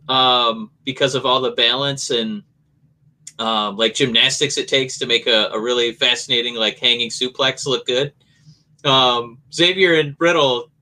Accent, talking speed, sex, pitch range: American, 150 wpm, male, 125-160 Hz